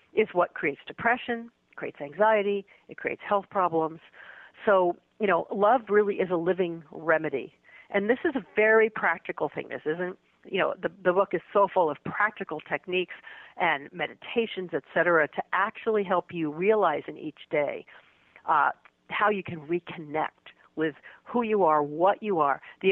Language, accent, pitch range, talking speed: English, American, 165-215 Hz, 165 wpm